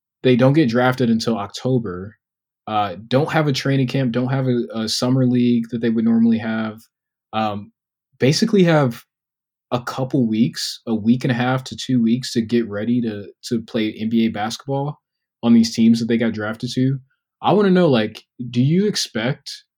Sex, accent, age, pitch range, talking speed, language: male, American, 20-39, 110-130 Hz, 185 wpm, English